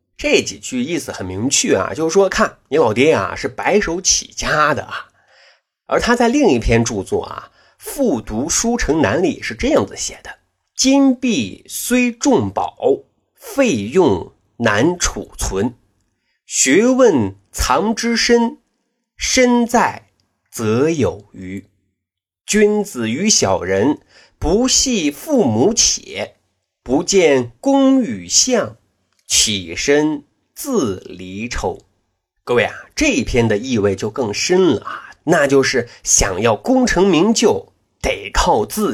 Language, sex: Chinese, male